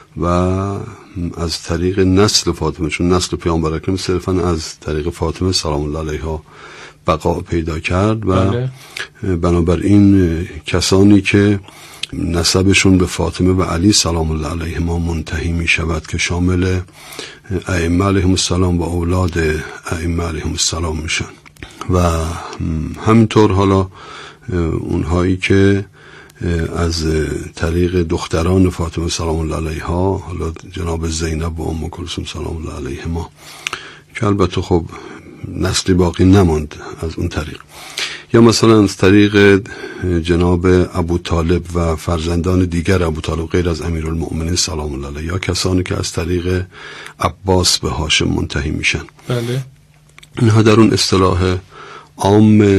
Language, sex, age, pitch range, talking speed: Persian, male, 50-69, 85-95 Hz, 125 wpm